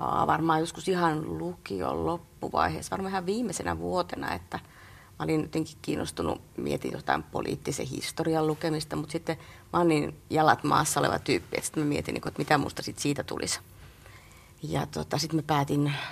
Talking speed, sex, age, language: 150 wpm, female, 30-49, Finnish